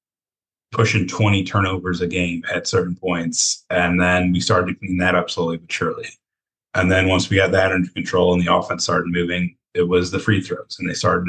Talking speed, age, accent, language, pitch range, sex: 215 wpm, 30-49, American, English, 85-95 Hz, male